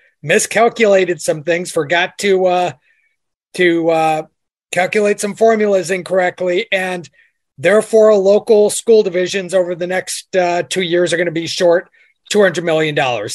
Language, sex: English, male